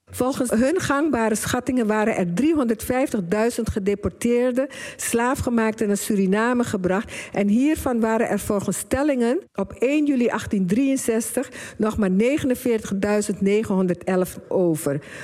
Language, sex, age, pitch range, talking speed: Dutch, female, 50-69, 195-250 Hz, 100 wpm